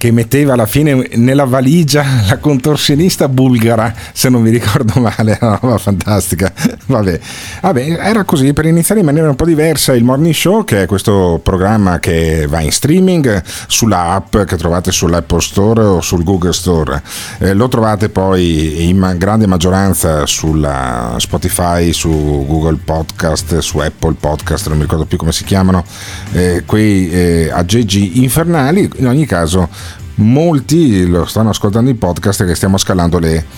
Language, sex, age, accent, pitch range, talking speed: Italian, male, 50-69, native, 90-125 Hz, 165 wpm